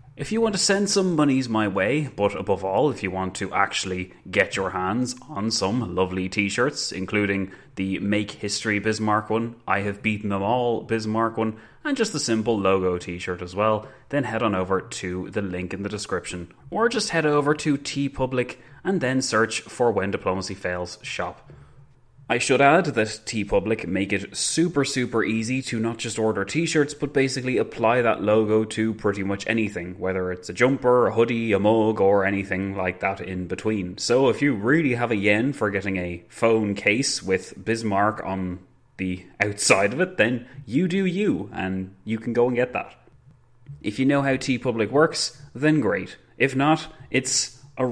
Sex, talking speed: male, 190 wpm